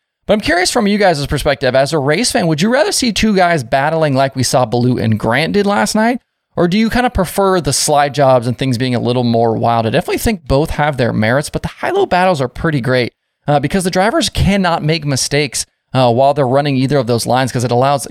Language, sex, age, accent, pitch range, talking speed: English, male, 20-39, American, 120-165 Hz, 250 wpm